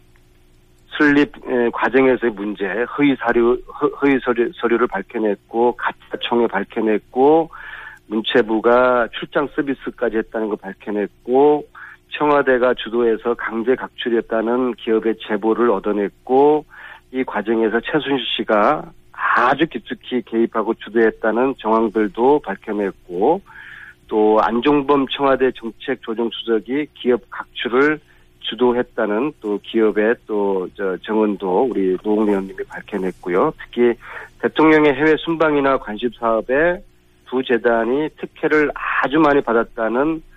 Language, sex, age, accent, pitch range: Korean, male, 40-59, native, 110-140 Hz